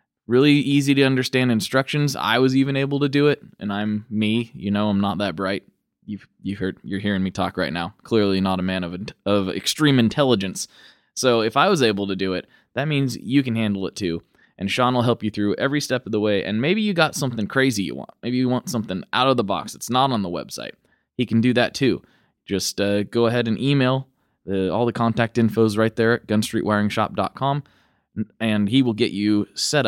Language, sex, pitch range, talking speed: English, male, 100-135 Hz, 225 wpm